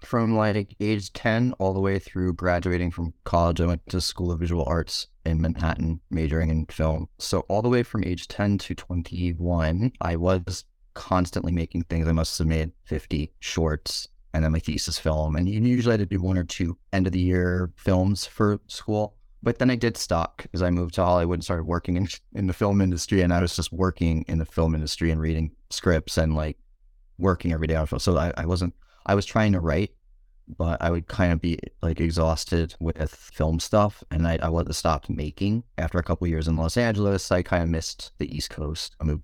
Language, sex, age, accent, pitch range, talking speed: English, male, 30-49, American, 80-95 Hz, 220 wpm